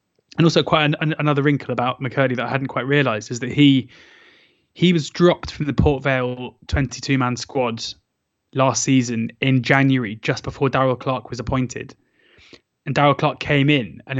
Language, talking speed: English, 180 wpm